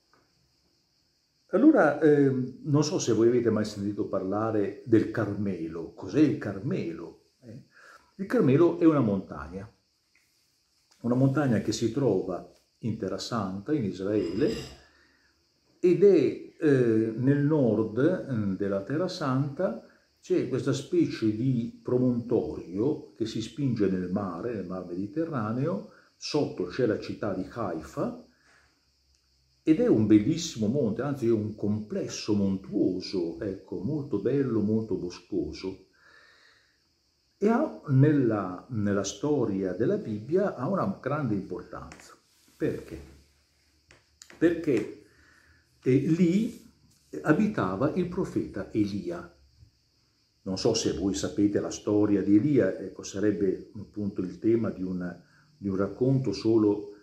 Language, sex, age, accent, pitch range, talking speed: Italian, male, 50-69, native, 95-145 Hz, 120 wpm